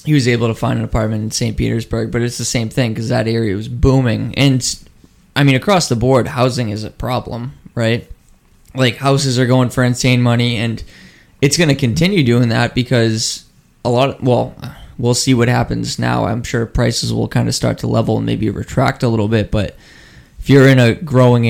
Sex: male